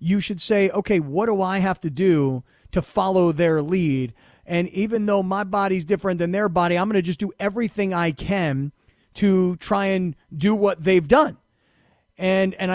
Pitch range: 175-215 Hz